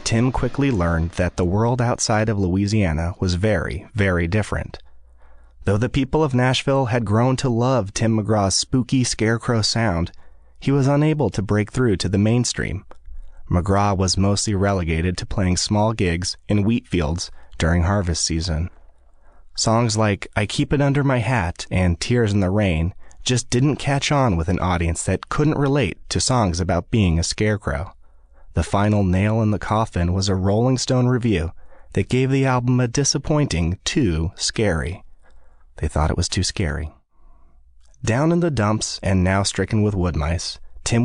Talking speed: 170 wpm